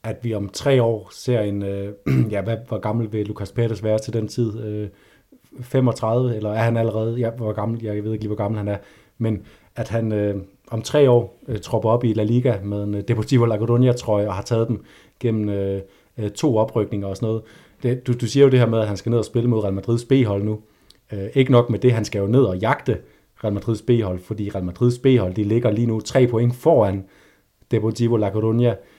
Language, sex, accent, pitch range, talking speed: Danish, male, native, 100-120 Hz, 230 wpm